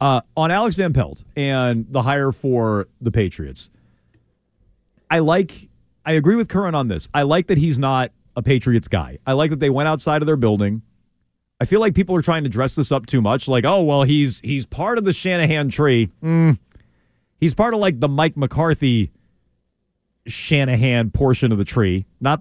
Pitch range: 110-160 Hz